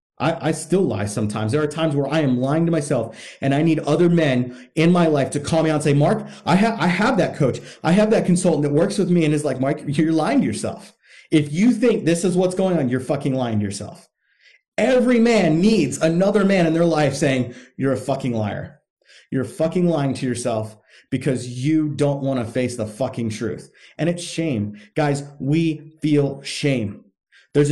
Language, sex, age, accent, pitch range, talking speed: English, male, 30-49, American, 125-165 Hz, 215 wpm